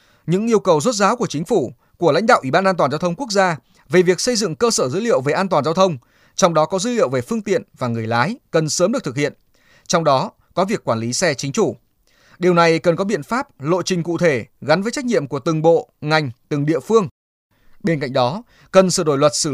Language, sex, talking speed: Vietnamese, male, 265 wpm